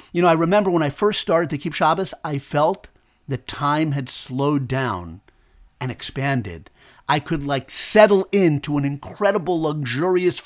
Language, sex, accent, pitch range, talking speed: English, male, American, 135-175 Hz, 160 wpm